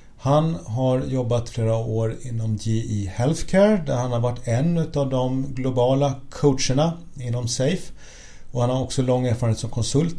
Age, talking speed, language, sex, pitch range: 40-59, 160 wpm, Swedish, male, 115-145 Hz